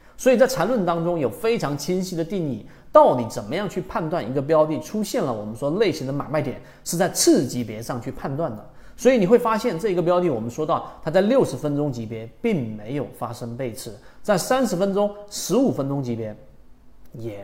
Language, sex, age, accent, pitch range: Chinese, male, 30-49, native, 125-195 Hz